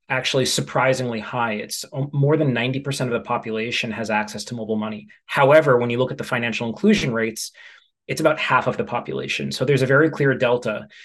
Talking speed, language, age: 195 wpm, English, 30-49